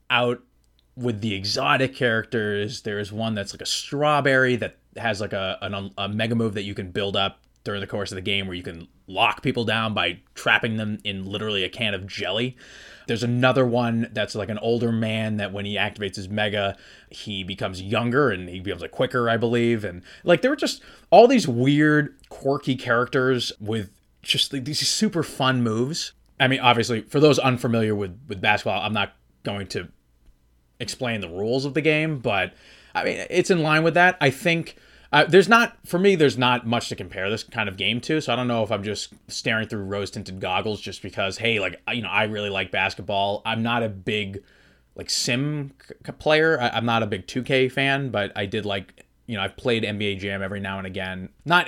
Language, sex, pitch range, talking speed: English, male, 100-130 Hz, 210 wpm